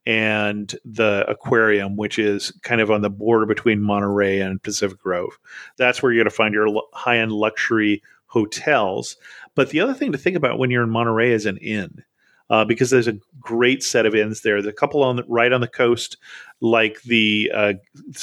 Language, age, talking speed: English, 40-59, 200 wpm